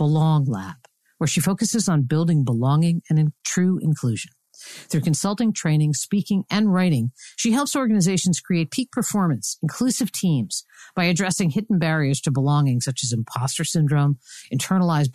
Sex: female